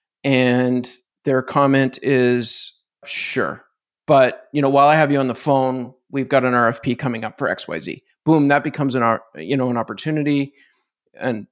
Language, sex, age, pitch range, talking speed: English, male, 30-49, 125-145 Hz, 180 wpm